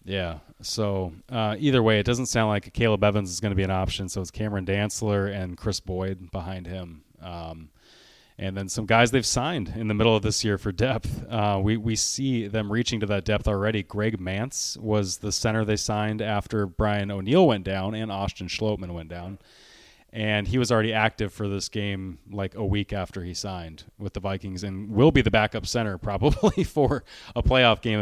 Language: English